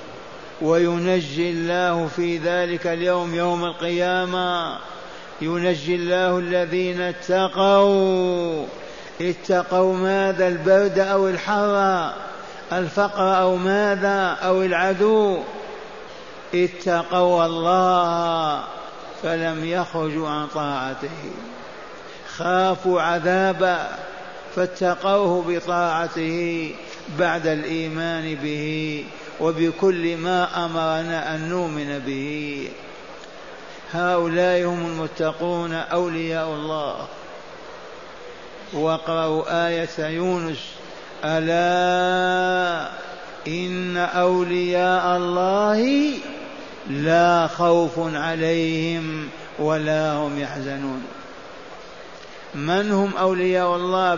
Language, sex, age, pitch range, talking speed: Arabic, male, 50-69, 165-185 Hz, 70 wpm